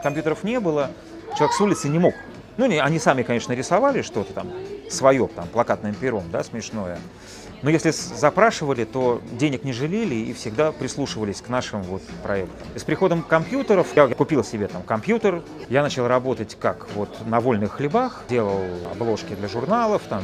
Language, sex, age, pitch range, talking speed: Russian, male, 30-49, 115-170 Hz, 165 wpm